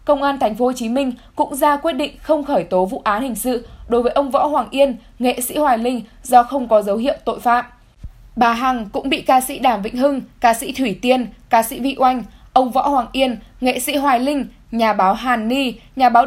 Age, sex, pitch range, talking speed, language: 10-29, female, 230-285 Hz, 245 wpm, Vietnamese